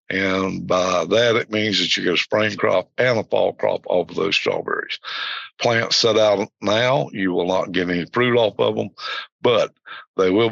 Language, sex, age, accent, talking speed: English, male, 60-79, American, 200 wpm